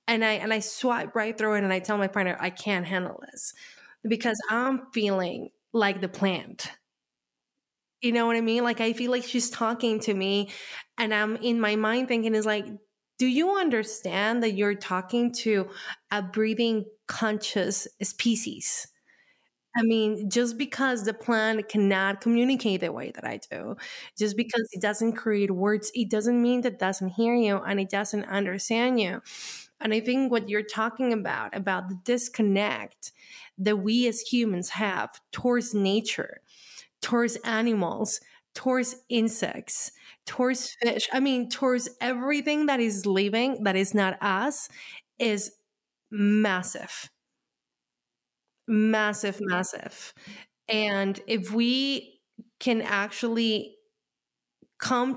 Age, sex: 20-39, female